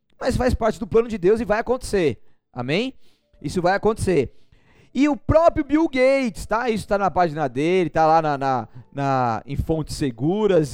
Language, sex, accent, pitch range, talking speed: Portuguese, male, Brazilian, 155-225 Hz, 170 wpm